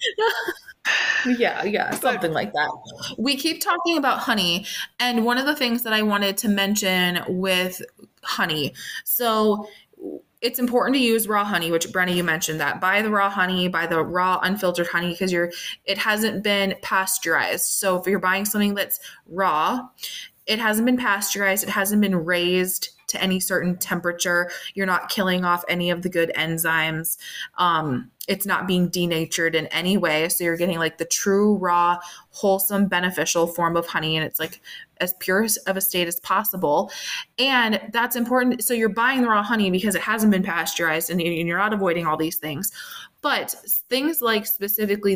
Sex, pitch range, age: female, 175-215 Hz, 20-39